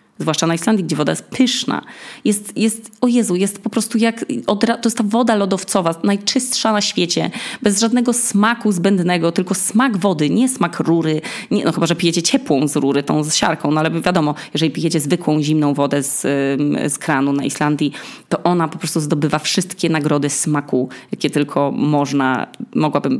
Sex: female